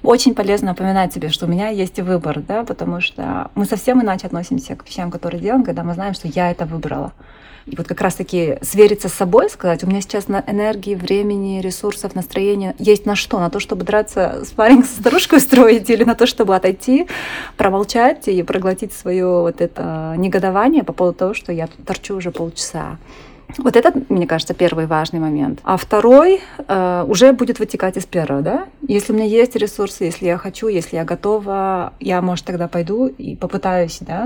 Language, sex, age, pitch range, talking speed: Russian, female, 30-49, 170-210 Hz, 195 wpm